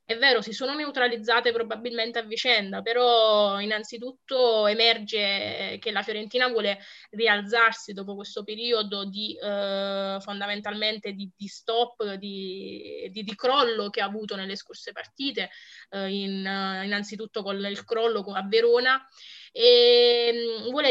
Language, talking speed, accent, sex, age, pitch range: Italian, 125 wpm, native, female, 20-39, 205-245 Hz